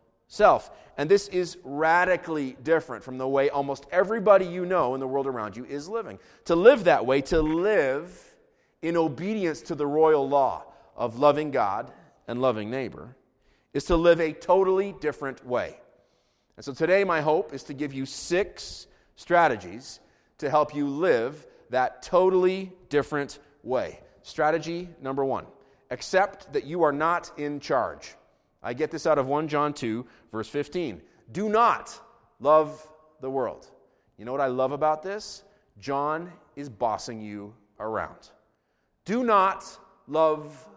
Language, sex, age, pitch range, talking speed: English, male, 30-49, 140-190 Hz, 155 wpm